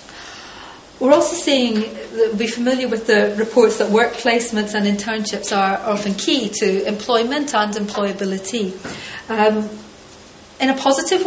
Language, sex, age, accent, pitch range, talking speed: English, female, 30-49, British, 200-225 Hz, 130 wpm